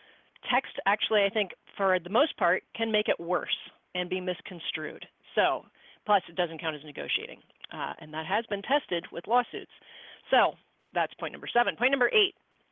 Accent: American